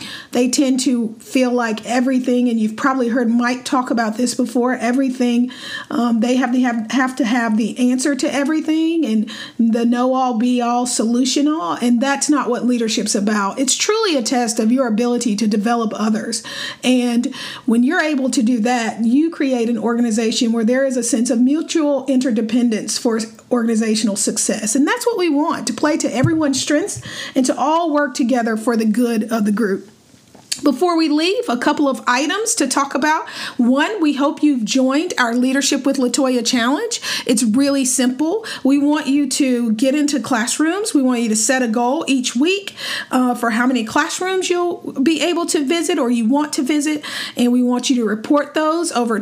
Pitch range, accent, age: 240-290 Hz, American, 50-69